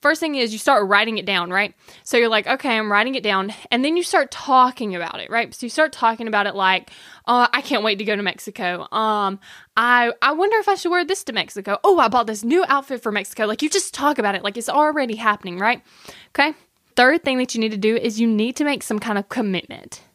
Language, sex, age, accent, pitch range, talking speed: English, female, 10-29, American, 205-285 Hz, 260 wpm